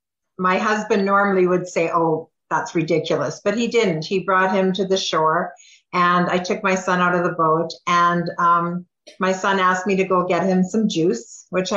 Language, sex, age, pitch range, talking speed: English, female, 50-69, 165-195 Hz, 200 wpm